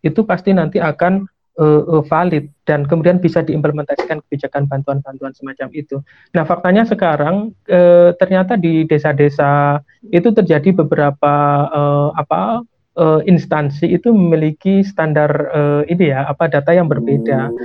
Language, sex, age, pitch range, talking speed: Indonesian, male, 30-49, 150-175 Hz, 130 wpm